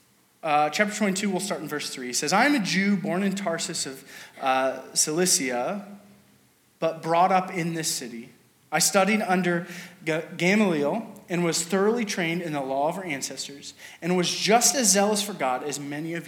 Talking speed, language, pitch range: 185 wpm, English, 155-200 Hz